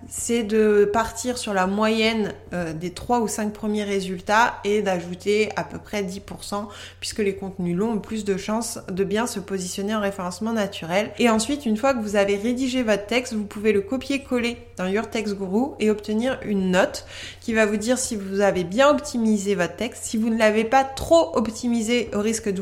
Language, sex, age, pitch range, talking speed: French, female, 20-39, 200-240 Hz, 205 wpm